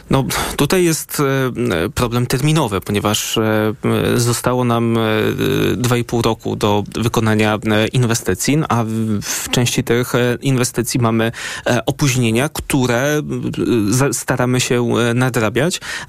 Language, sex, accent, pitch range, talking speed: Polish, male, native, 115-145 Hz, 90 wpm